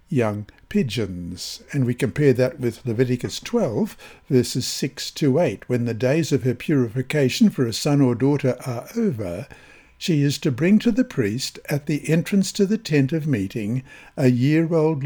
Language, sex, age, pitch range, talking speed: English, male, 60-79, 125-175 Hz, 170 wpm